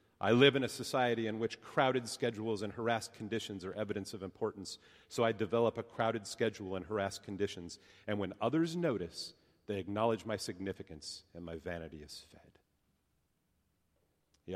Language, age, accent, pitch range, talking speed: English, 40-59, American, 90-105 Hz, 160 wpm